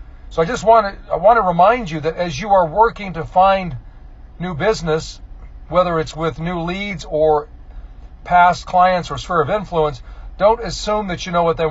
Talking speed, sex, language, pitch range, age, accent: 195 wpm, male, English, 130-180 Hz, 40-59, American